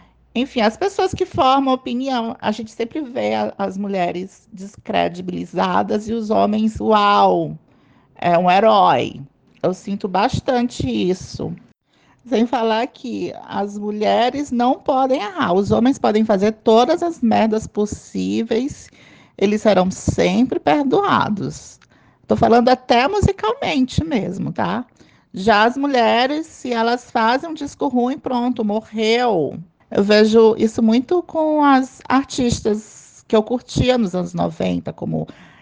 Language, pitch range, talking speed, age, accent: Portuguese, 175-245 Hz, 125 wpm, 40-59, Brazilian